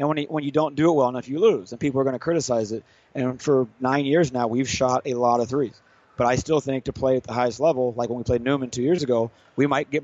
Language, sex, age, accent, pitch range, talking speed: English, male, 30-49, American, 120-140 Hz, 305 wpm